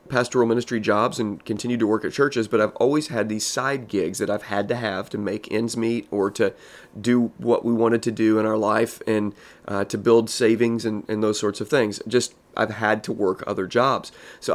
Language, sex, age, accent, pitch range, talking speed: English, male, 30-49, American, 110-125 Hz, 225 wpm